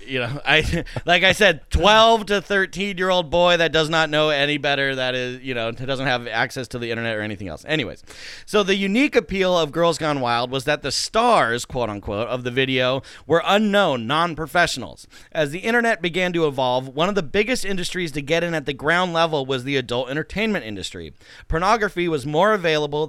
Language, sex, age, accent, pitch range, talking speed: English, male, 30-49, American, 130-180 Hz, 205 wpm